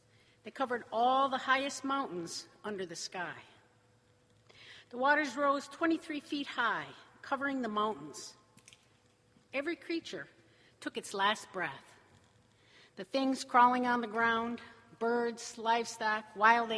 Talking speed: 120 wpm